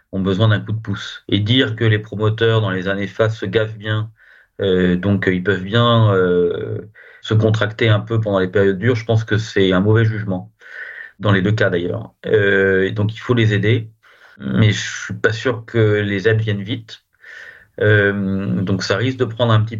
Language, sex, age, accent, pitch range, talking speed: French, male, 40-59, French, 100-115 Hz, 205 wpm